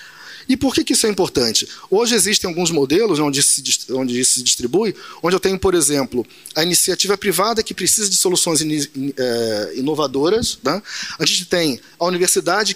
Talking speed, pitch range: 155 wpm, 145-200 Hz